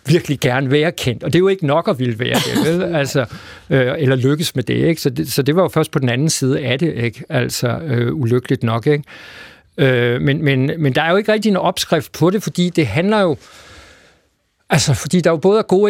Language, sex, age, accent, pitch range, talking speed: Danish, male, 60-79, native, 140-175 Hz, 245 wpm